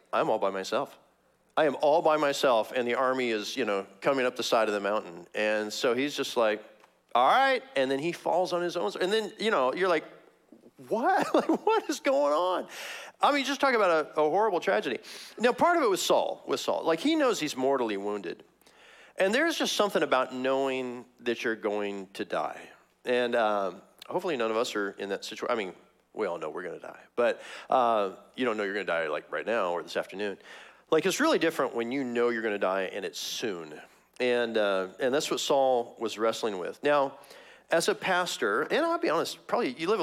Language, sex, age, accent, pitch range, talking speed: English, male, 40-59, American, 110-155 Hz, 225 wpm